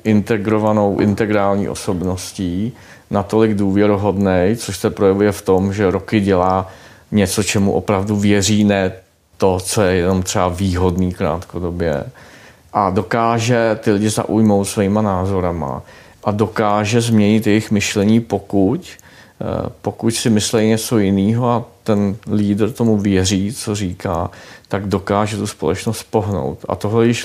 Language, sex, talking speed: Czech, male, 130 wpm